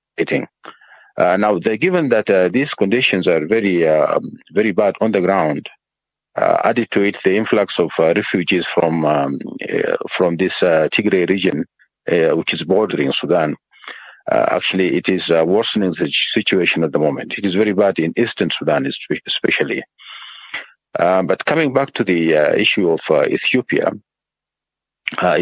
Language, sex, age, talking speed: English, male, 50-69, 160 wpm